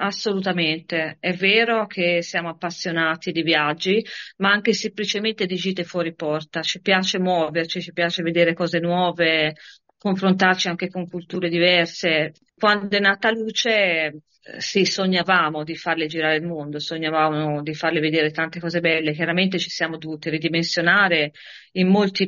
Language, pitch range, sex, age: Italian, 155-185 Hz, female, 40-59